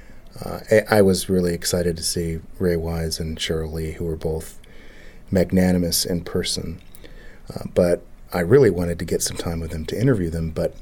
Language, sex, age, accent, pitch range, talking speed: English, male, 40-59, American, 85-100 Hz, 185 wpm